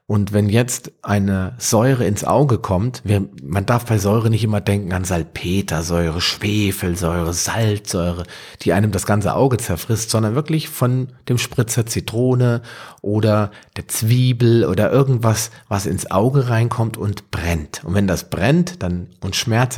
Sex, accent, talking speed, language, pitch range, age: male, German, 150 wpm, German, 95-120 Hz, 40-59